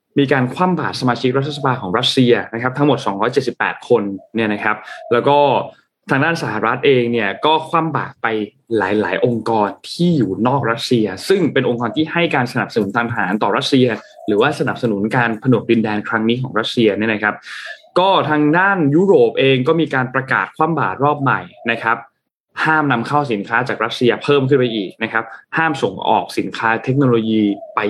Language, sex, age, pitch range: Thai, male, 20-39, 115-145 Hz